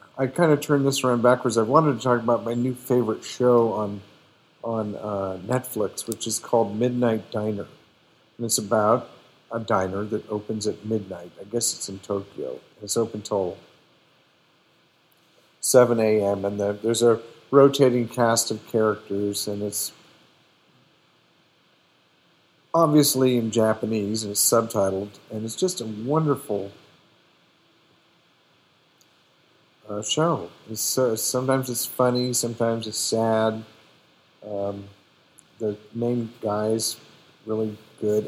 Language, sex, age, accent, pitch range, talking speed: English, male, 50-69, American, 105-125 Hz, 125 wpm